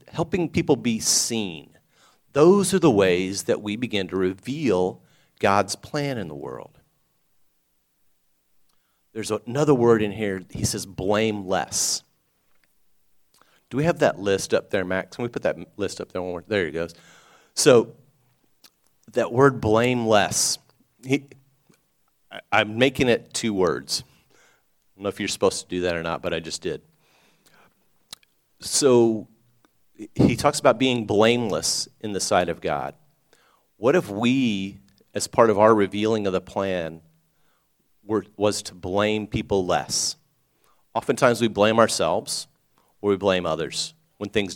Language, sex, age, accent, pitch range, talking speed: English, male, 40-59, American, 95-115 Hz, 145 wpm